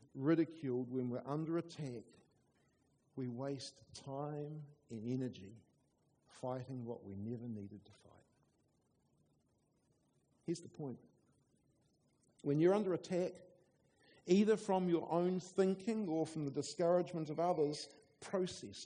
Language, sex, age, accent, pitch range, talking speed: English, male, 50-69, Australian, 145-190 Hz, 115 wpm